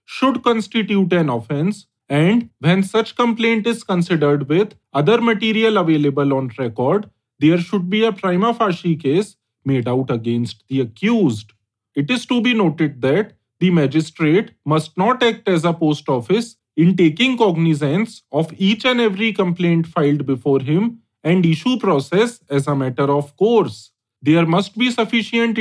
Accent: Indian